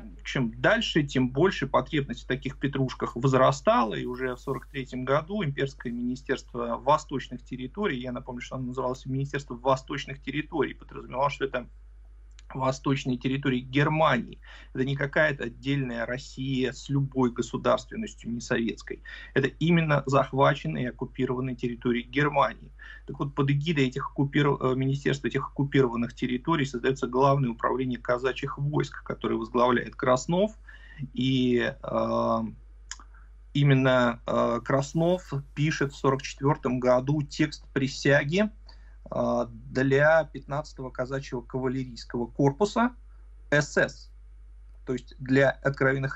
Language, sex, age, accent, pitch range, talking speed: Russian, male, 30-49, native, 125-145 Hz, 115 wpm